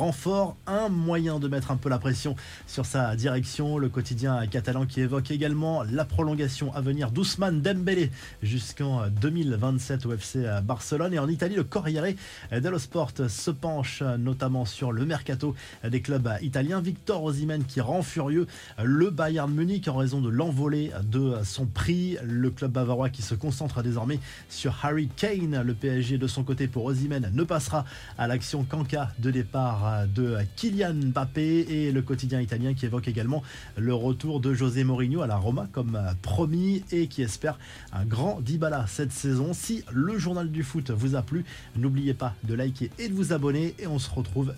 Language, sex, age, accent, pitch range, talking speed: French, male, 20-39, French, 125-155 Hz, 180 wpm